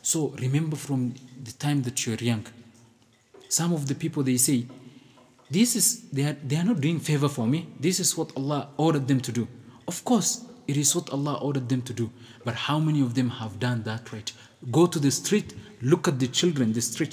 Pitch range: 125-150 Hz